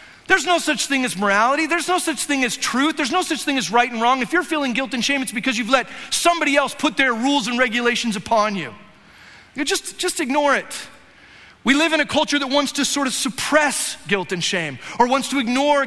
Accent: American